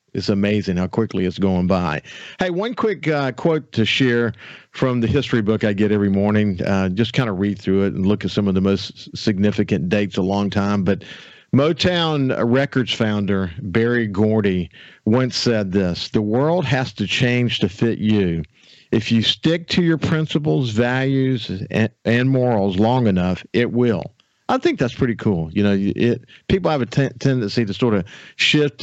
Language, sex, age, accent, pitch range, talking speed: English, male, 50-69, American, 100-130 Hz, 185 wpm